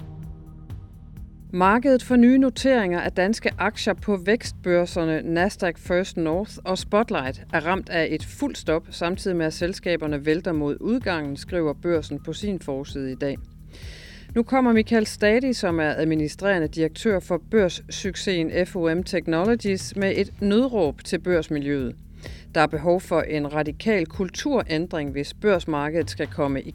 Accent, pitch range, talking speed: native, 145-195 Hz, 140 wpm